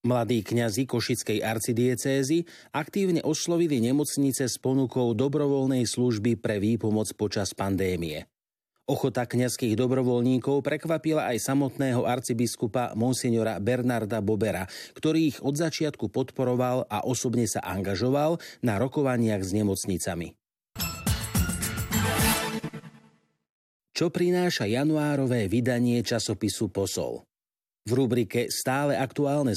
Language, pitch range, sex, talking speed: Slovak, 110-140 Hz, male, 95 wpm